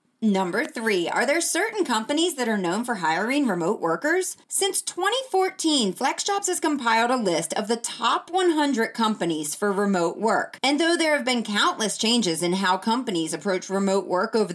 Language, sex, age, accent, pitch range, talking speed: English, female, 30-49, American, 195-290 Hz, 175 wpm